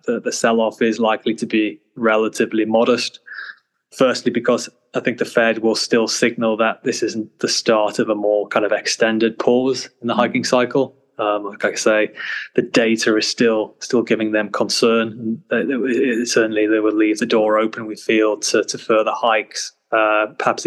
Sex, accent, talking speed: male, British, 175 wpm